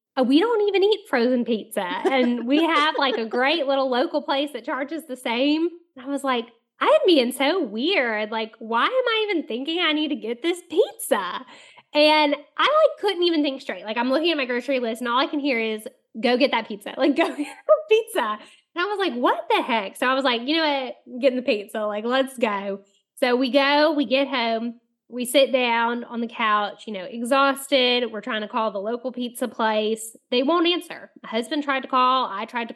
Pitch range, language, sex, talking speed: 240-315 Hz, English, female, 225 wpm